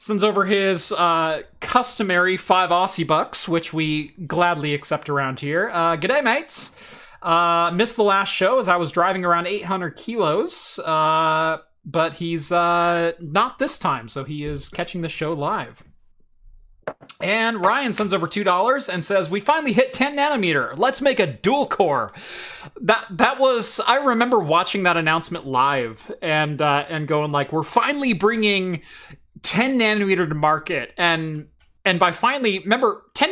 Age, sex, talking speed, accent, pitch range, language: 30-49, male, 155 wpm, American, 160-210 Hz, English